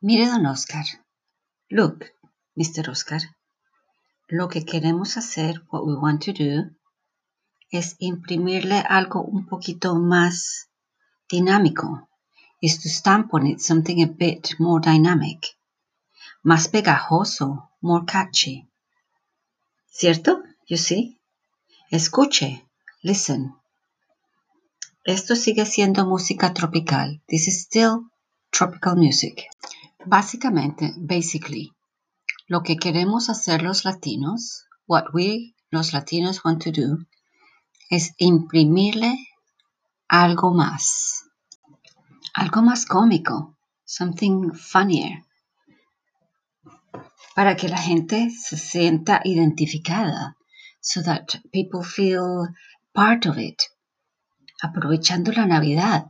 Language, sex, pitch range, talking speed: English, female, 160-200 Hz, 100 wpm